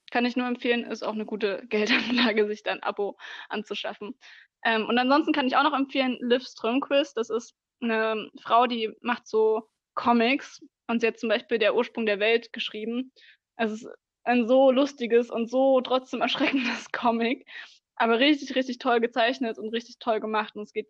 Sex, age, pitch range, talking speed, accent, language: female, 20-39, 210-240 Hz, 185 wpm, German, German